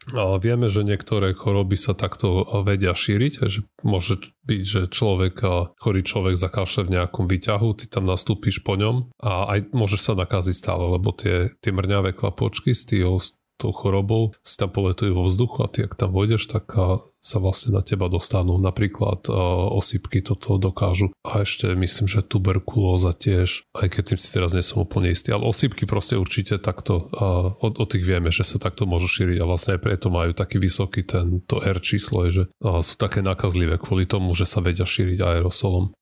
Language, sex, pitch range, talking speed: Slovak, male, 95-110 Hz, 185 wpm